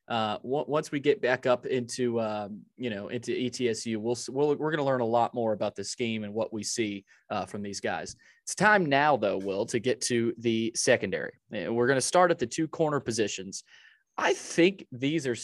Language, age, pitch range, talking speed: English, 20-39, 110-130 Hz, 220 wpm